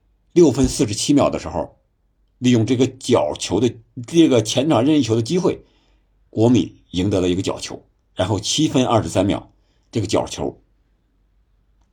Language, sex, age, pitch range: Chinese, male, 50-69, 95-130 Hz